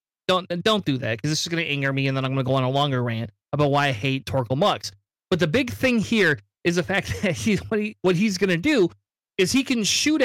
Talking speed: 280 wpm